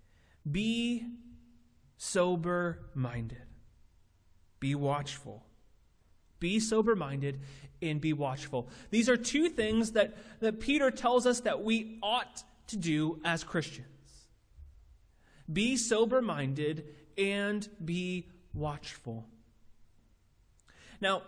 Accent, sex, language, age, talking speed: American, male, English, 30-49, 85 wpm